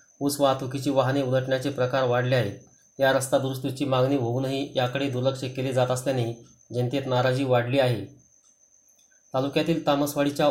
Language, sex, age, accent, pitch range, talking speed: Marathi, male, 30-49, native, 125-140 Hz, 130 wpm